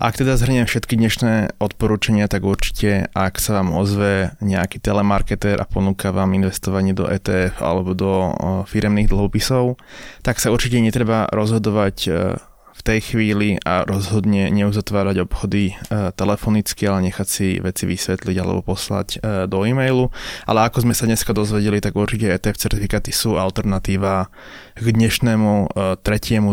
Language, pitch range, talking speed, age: Slovak, 95-110 Hz, 135 wpm, 20-39